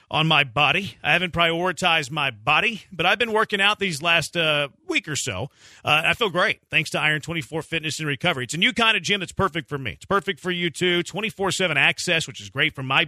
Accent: American